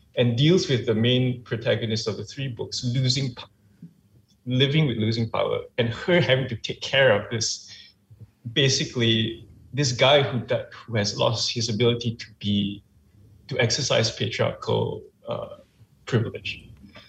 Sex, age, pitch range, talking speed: male, 20-39, 110-130 Hz, 145 wpm